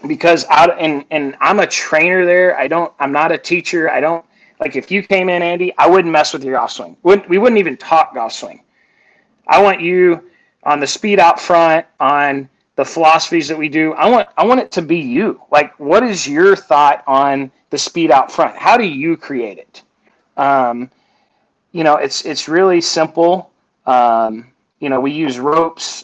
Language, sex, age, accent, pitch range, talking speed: English, male, 30-49, American, 130-170 Hz, 200 wpm